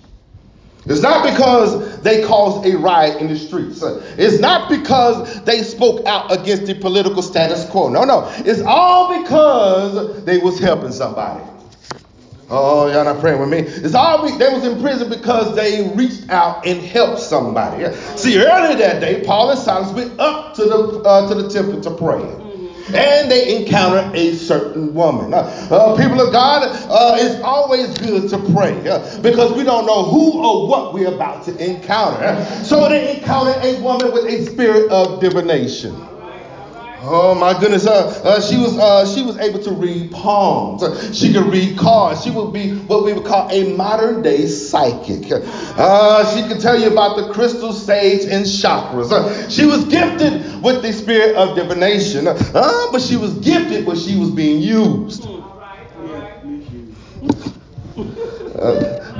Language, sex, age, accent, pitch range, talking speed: English, male, 40-59, American, 190-250 Hz, 170 wpm